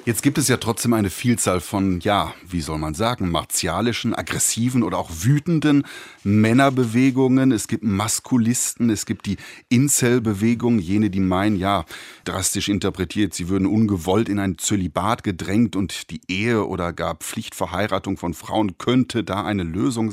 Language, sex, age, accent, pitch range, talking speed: German, male, 30-49, German, 100-120 Hz, 150 wpm